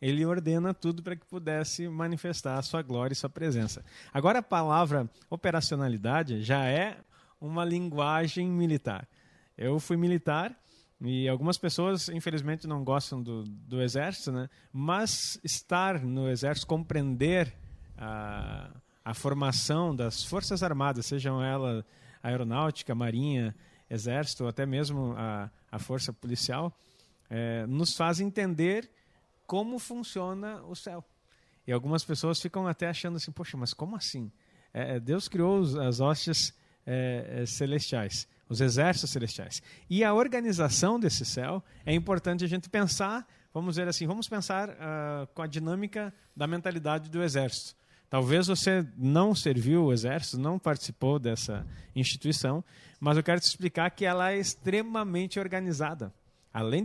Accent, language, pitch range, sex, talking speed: Brazilian, Portuguese, 130-180 Hz, male, 140 wpm